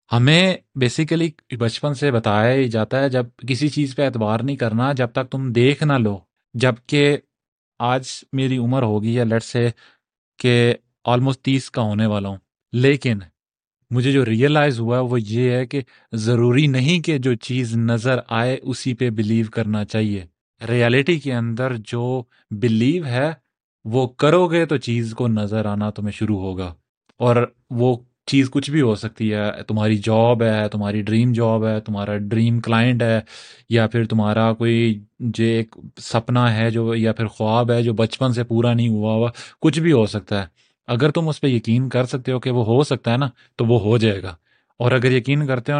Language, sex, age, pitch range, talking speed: Urdu, male, 30-49, 110-130 Hz, 185 wpm